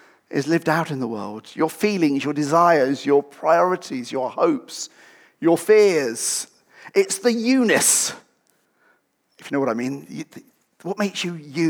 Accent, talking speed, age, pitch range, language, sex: British, 150 wpm, 40-59, 145-205 Hz, English, male